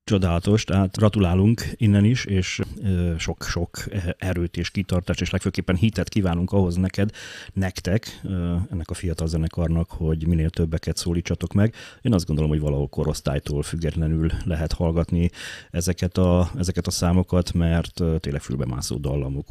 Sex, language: male, Hungarian